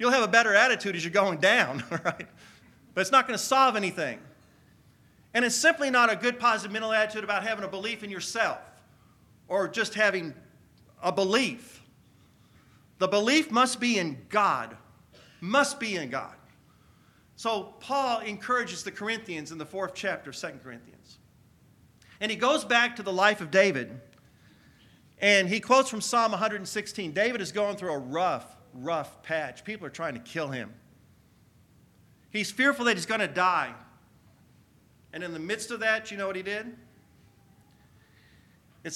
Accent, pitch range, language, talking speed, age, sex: American, 180-230 Hz, English, 165 wpm, 50-69, male